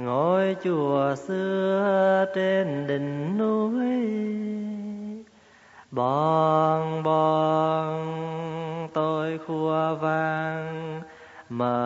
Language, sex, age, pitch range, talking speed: Vietnamese, male, 20-39, 125-190 Hz, 60 wpm